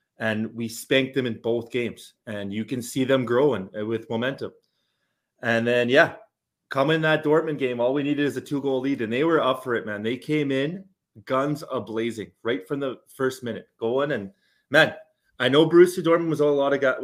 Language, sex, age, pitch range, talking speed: English, male, 20-39, 120-150 Hz, 210 wpm